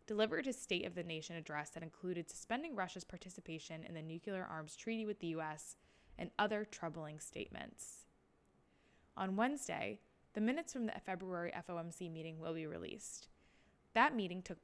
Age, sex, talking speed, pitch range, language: 20-39, female, 160 wpm, 160-195 Hz, English